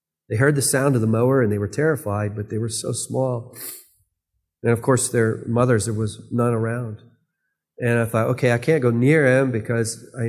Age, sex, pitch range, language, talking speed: 40-59, male, 115-140 Hz, English, 210 wpm